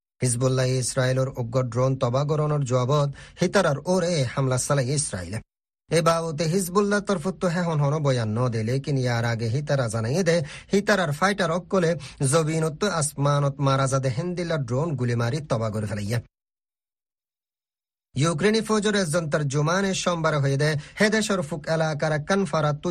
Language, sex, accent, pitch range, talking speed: Bengali, male, native, 130-170 Hz, 115 wpm